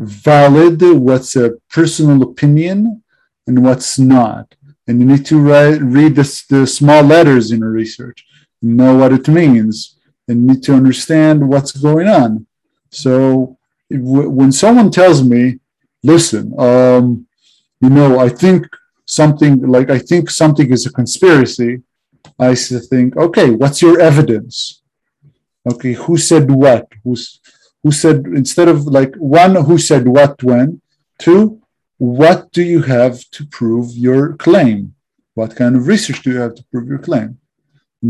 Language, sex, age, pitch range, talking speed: Hebrew, male, 50-69, 125-150 Hz, 150 wpm